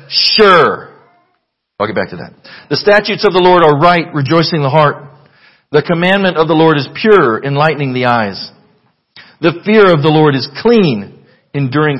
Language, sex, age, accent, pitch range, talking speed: English, male, 50-69, American, 145-175 Hz, 170 wpm